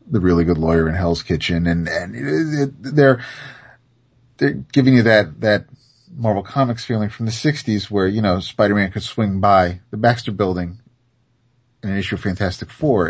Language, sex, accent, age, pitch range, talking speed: English, male, American, 30-49, 95-120 Hz, 180 wpm